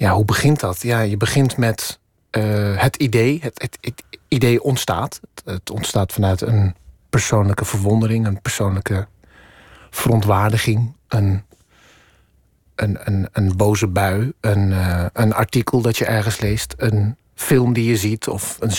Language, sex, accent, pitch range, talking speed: Dutch, male, Dutch, 100-115 Hz, 150 wpm